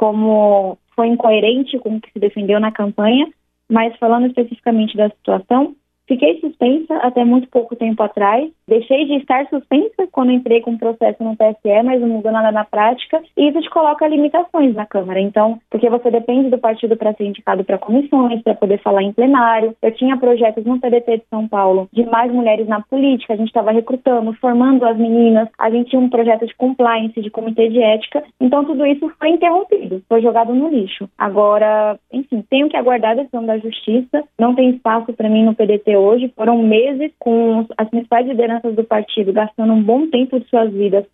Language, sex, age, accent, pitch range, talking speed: Portuguese, female, 20-39, Brazilian, 220-255 Hz, 195 wpm